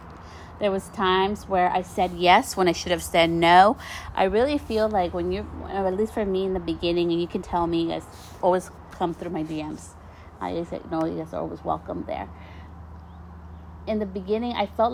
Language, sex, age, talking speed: English, female, 30-49, 215 wpm